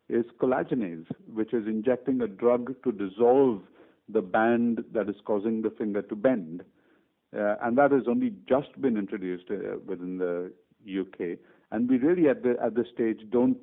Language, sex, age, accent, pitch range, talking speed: English, male, 50-69, Indian, 100-125 Hz, 170 wpm